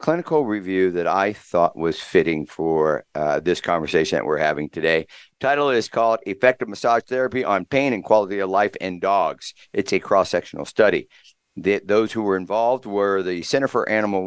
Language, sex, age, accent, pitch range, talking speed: English, male, 50-69, American, 95-125 Hz, 185 wpm